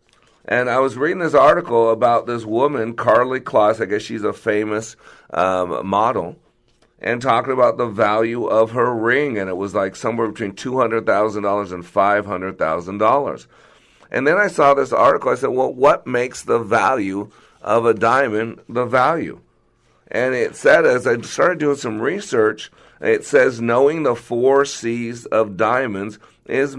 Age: 50-69